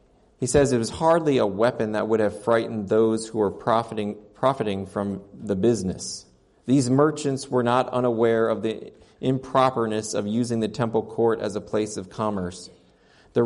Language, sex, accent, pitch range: English, male, American, 105-125 Hz